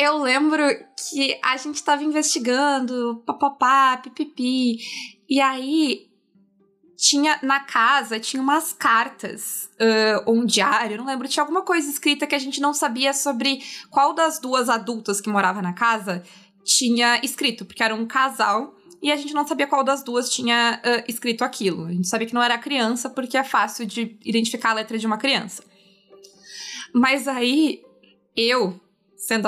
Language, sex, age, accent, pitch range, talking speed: Portuguese, female, 20-39, Brazilian, 220-275 Hz, 165 wpm